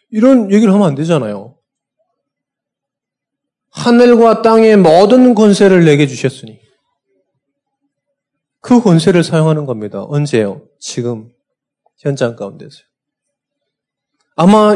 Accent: native